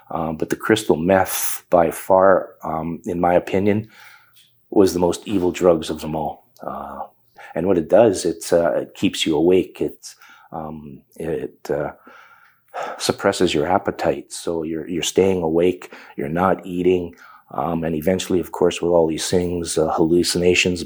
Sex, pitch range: male, 85-100 Hz